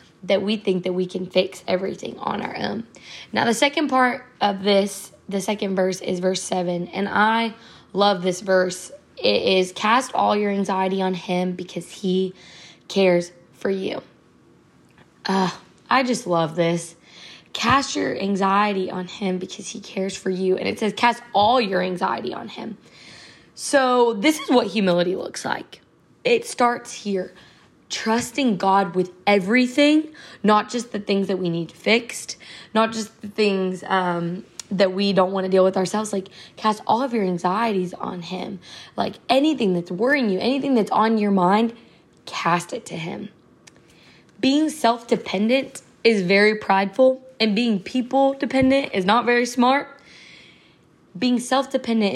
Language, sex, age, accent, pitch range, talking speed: English, female, 20-39, American, 185-240 Hz, 160 wpm